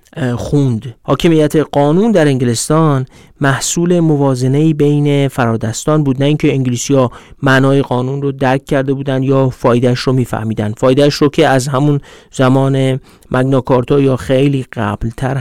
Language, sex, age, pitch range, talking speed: Persian, male, 40-59, 125-150 Hz, 130 wpm